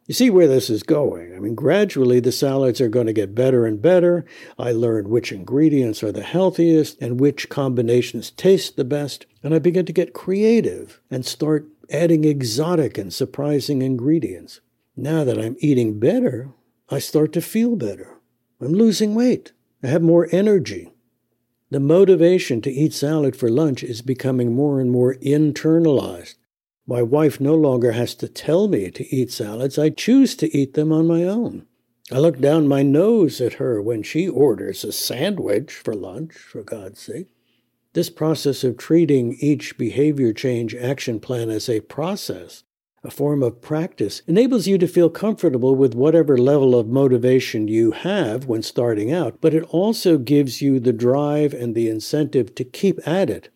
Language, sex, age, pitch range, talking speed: English, male, 60-79, 125-165 Hz, 175 wpm